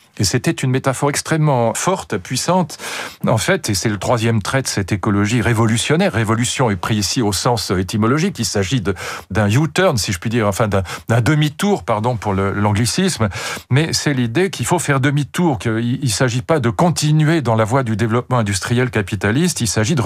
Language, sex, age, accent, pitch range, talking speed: French, male, 40-59, French, 110-145 Hz, 205 wpm